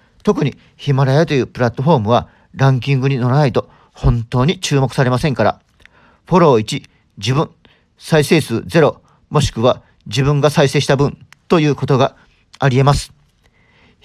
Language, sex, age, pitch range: Japanese, male, 40-59, 135-165 Hz